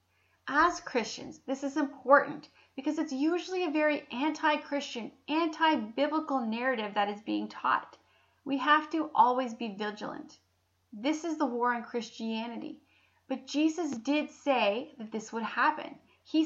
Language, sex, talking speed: English, female, 140 wpm